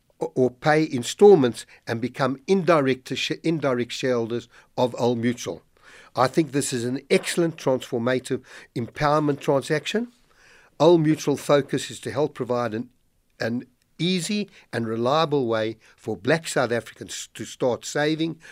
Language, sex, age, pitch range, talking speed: English, male, 60-79, 125-165 Hz, 135 wpm